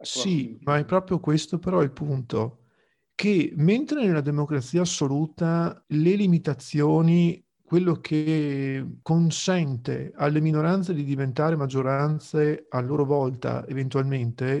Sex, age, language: male, 50-69, Italian